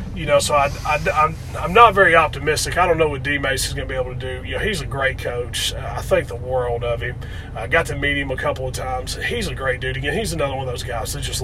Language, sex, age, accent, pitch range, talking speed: English, male, 30-49, American, 115-140 Hz, 280 wpm